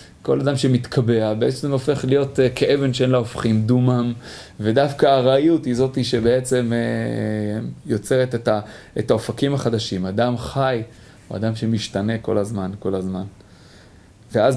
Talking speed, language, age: 140 wpm, Hebrew, 30-49